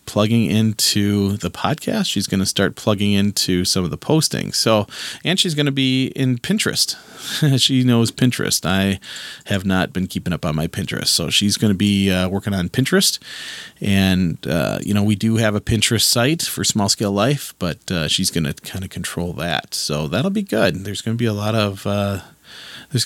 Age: 30-49